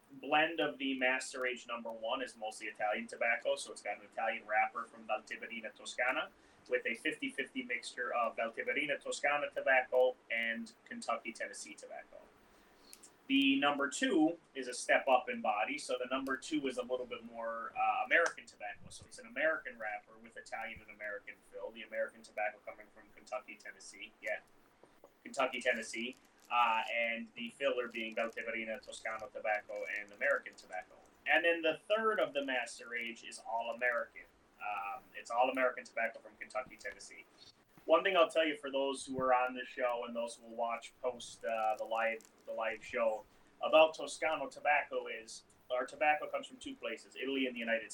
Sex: male